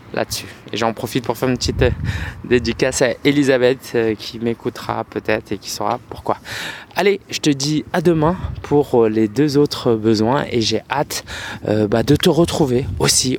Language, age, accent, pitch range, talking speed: French, 20-39, French, 110-135 Hz, 175 wpm